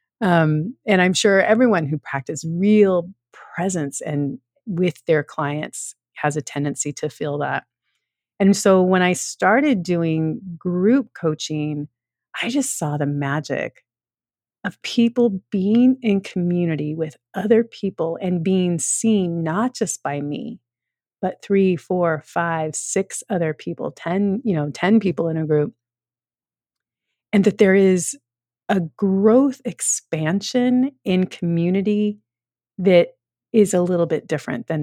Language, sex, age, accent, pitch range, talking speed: English, female, 30-49, American, 155-205 Hz, 135 wpm